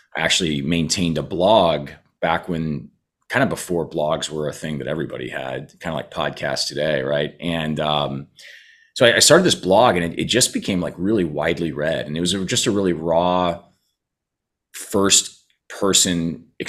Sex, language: male, English